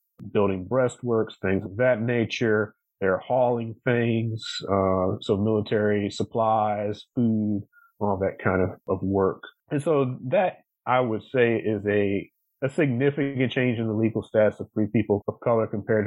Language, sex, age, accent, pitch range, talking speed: English, male, 30-49, American, 105-125 Hz, 155 wpm